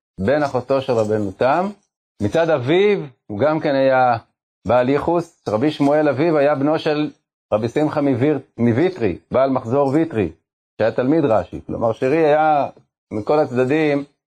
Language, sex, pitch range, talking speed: Hebrew, male, 115-155 Hz, 145 wpm